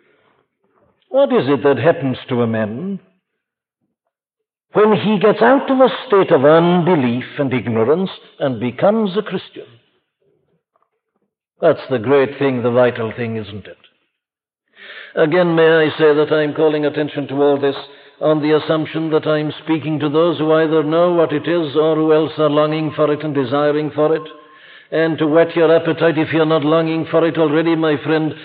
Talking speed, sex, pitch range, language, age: 175 wpm, male, 145-175 Hz, English, 60-79